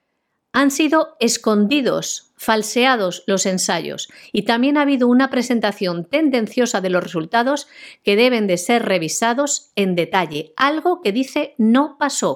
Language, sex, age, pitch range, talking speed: Spanish, female, 50-69, 190-275 Hz, 135 wpm